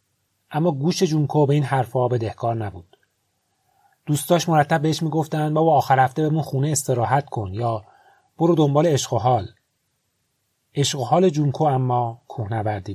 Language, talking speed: Persian, 130 wpm